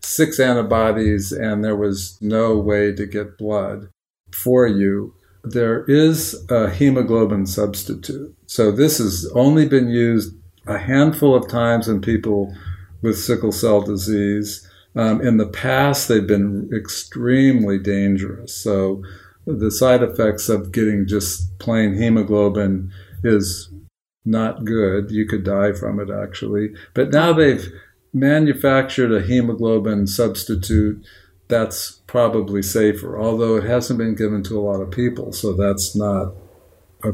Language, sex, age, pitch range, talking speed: English, male, 50-69, 100-115 Hz, 135 wpm